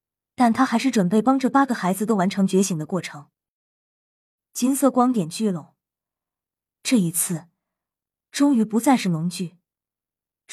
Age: 20-39